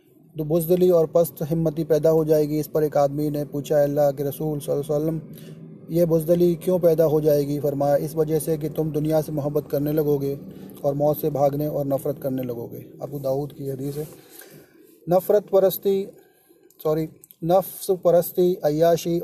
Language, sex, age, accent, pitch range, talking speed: Hindi, male, 30-49, native, 150-165 Hz, 165 wpm